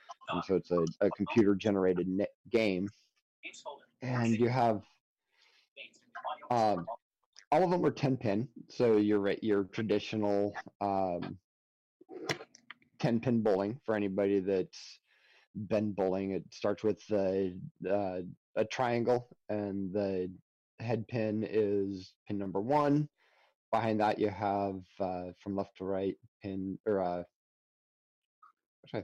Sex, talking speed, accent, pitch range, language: male, 130 wpm, American, 95-110 Hz, English